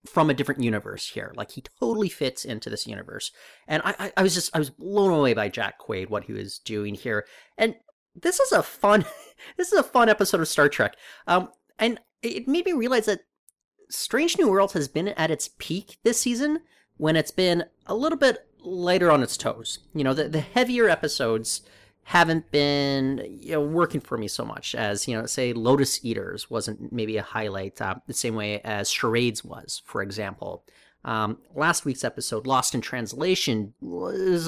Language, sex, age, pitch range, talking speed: English, male, 30-49, 120-205 Hz, 195 wpm